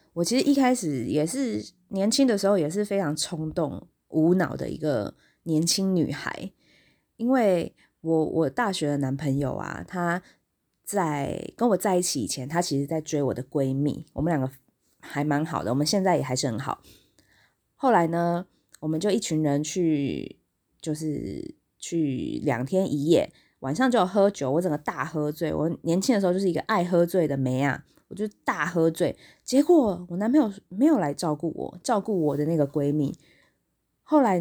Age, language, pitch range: 20-39, Chinese, 150-195 Hz